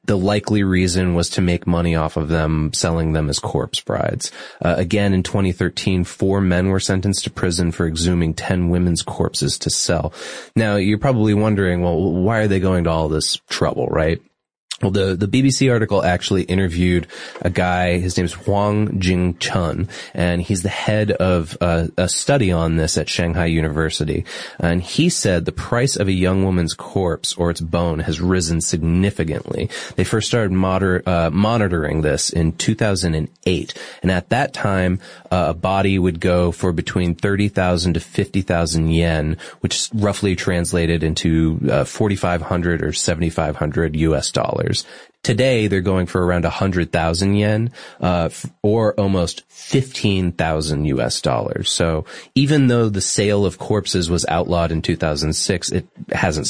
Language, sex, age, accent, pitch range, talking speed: English, male, 20-39, American, 85-100 Hz, 160 wpm